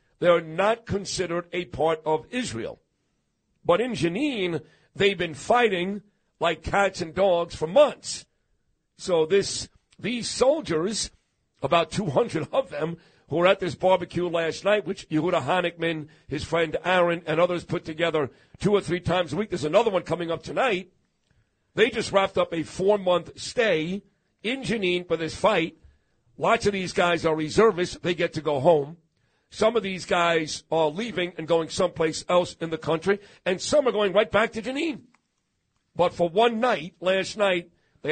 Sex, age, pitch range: male, 50-69, 160-195 Hz